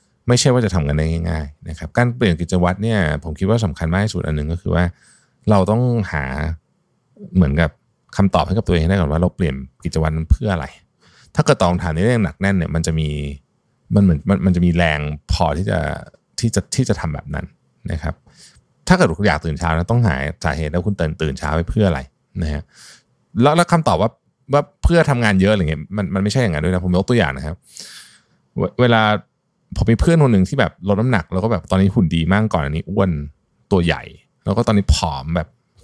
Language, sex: Thai, male